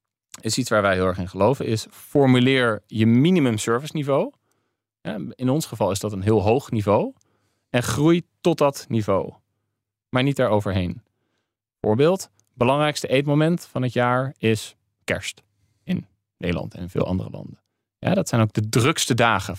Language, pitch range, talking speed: Dutch, 100-125 Hz, 160 wpm